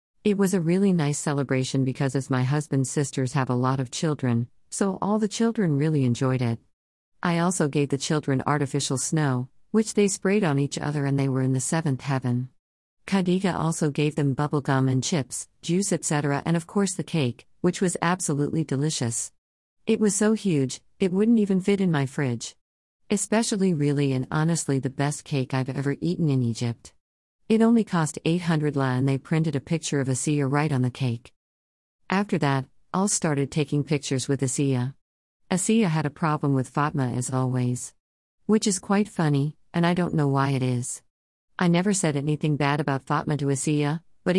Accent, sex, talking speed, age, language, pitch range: American, female, 185 wpm, 40-59, English, 130-170 Hz